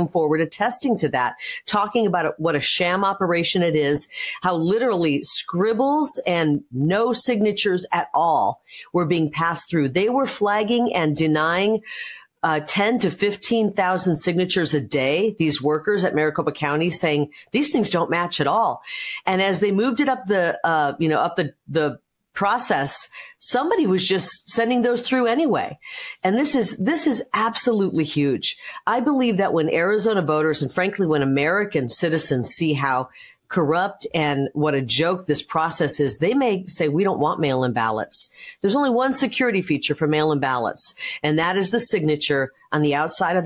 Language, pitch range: English, 150-210 Hz